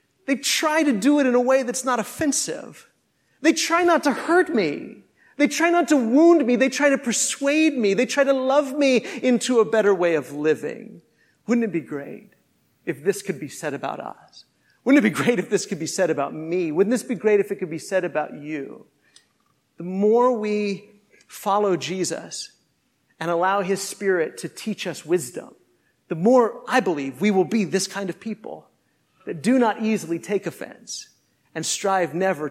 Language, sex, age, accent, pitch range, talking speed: English, male, 40-59, American, 170-235 Hz, 195 wpm